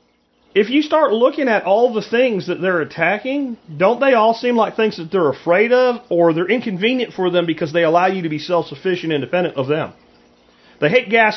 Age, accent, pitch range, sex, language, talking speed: 40-59, American, 150-235 Hz, male, English, 205 wpm